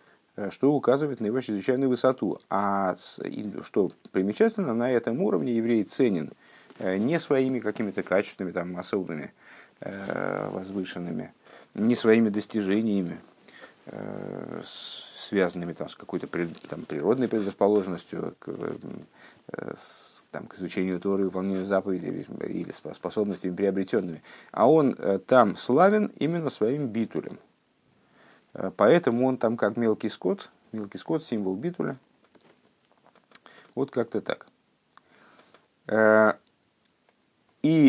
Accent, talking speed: native, 95 wpm